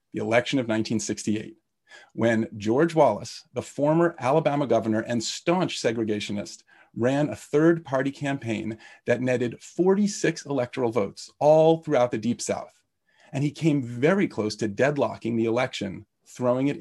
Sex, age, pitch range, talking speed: male, 40-59, 115-165 Hz, 145 wpm